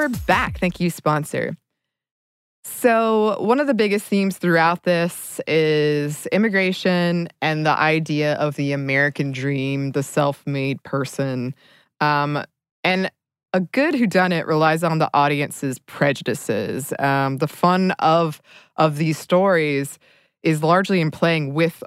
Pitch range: 145-185 Hz